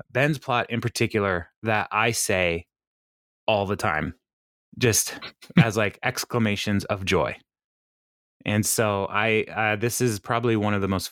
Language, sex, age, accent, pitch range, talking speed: English, male, 20-39, American, 100-120 Hz, 145 wpm